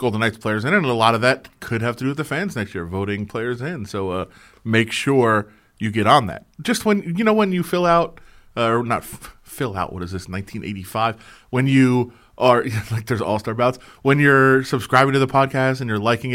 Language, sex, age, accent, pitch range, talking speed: English, male, 30-49, American, 105-135 Hz, 230 wpm